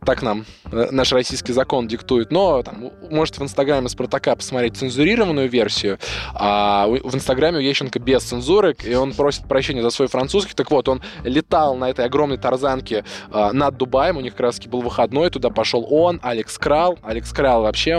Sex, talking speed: male, 180 wpm